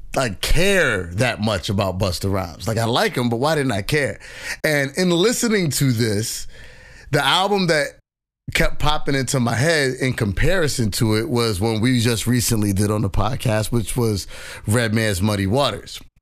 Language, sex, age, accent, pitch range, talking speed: English, male, 30-49, American, 110-140 Hz, 180 wpm